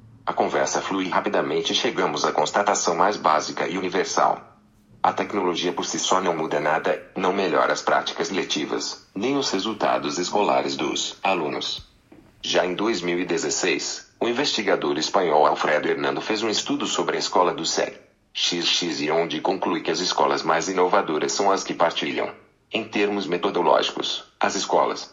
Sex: male